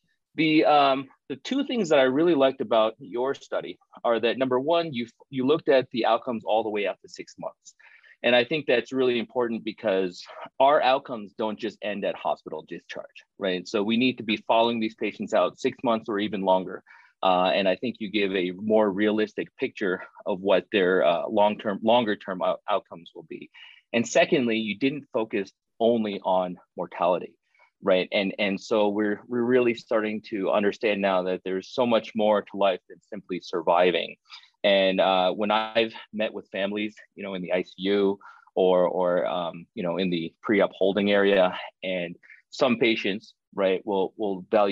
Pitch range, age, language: 95-115 Hz, 30-49, English